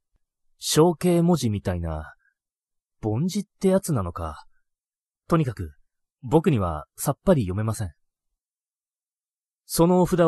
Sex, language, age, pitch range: male, Japanese, 30-49, 100-160 Hz